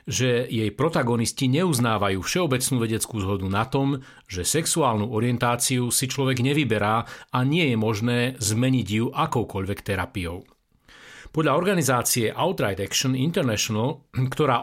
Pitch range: 110-135 Hz